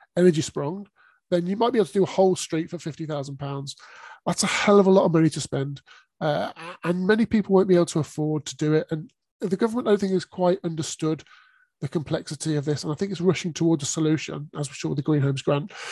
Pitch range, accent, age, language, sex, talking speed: 150-190 Hz, British, 30-49, English, male, 240 wpm